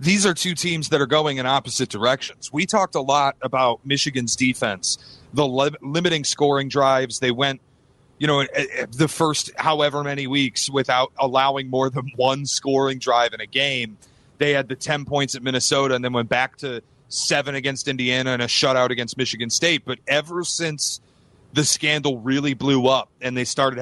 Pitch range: 130-150 Hz